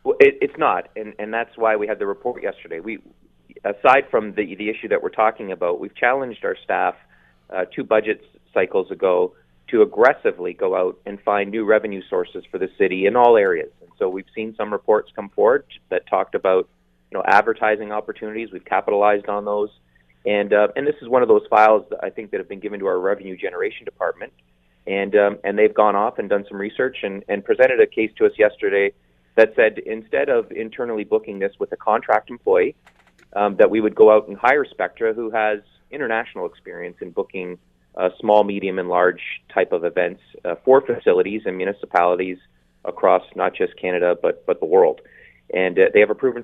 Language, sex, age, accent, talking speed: English, male, 30-49, American, 205 wpm